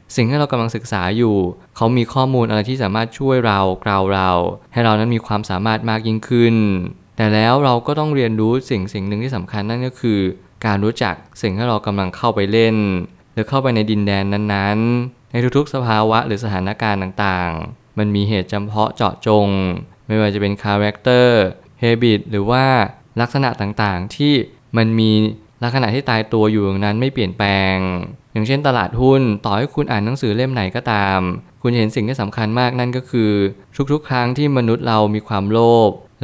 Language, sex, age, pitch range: Thai, male, 20-39, 100-125 Hz